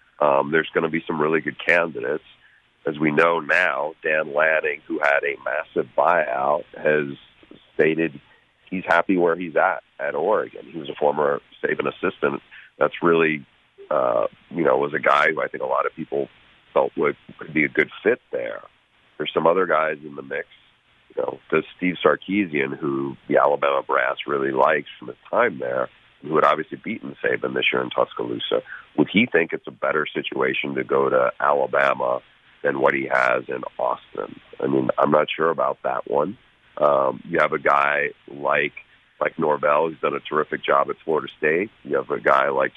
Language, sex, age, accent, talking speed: English, male, 40-59, American, 185 wpm